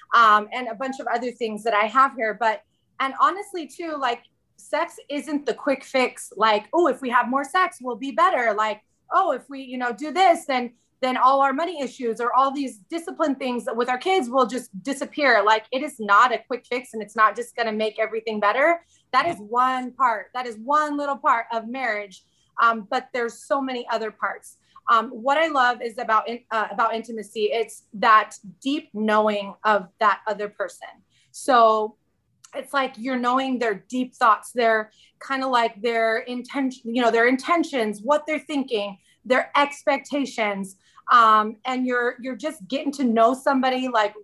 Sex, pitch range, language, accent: female, 225-285 Hz, English, American